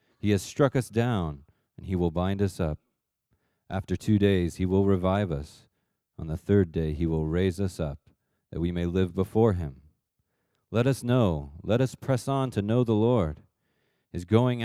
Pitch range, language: 85-105 Hz, English